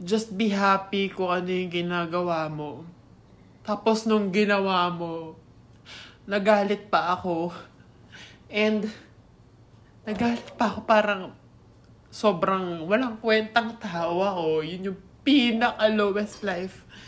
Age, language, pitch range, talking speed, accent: 20-39, Filipino, 160-215 Hz, 105 wpm, native